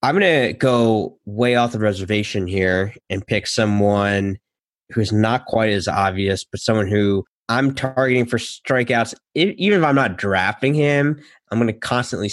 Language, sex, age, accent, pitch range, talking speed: English, male, 20-39, American, 105-130 Hz, 170 wpm